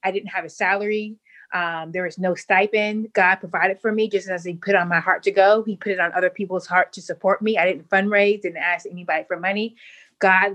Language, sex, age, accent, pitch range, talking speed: English, female, 20-39, American, 180-215 Hz, 240 wpm